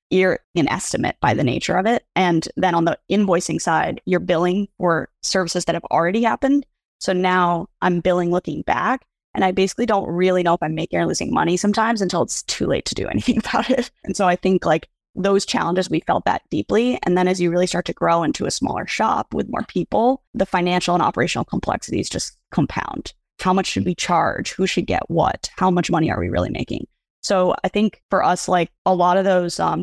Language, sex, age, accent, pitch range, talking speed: English, female, 20-39, American, 175-195 Hz, 220 wpm